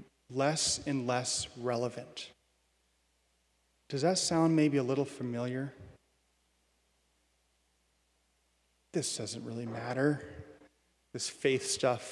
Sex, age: male, 30-49